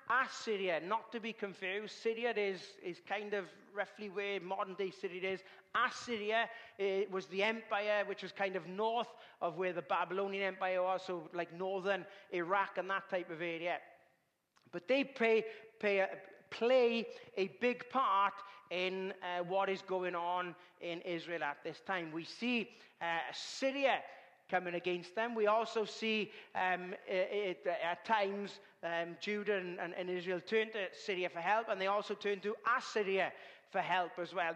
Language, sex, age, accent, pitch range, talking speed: English, male, 40-59, British, 180-215 Hz, 165 wpm